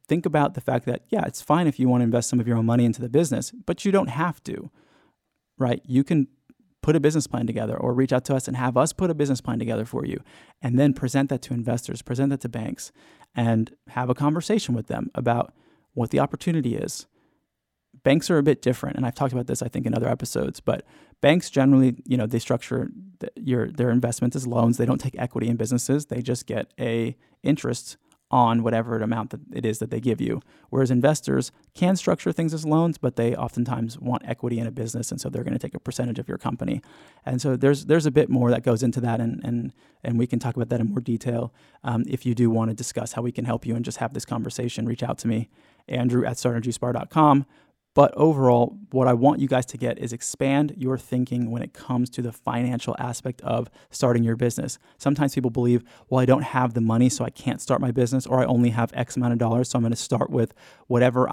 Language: English